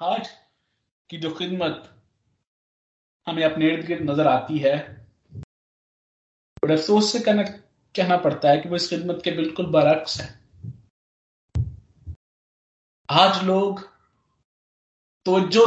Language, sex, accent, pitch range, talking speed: Hindi, male, native, 145-200 Hz, 105 wpm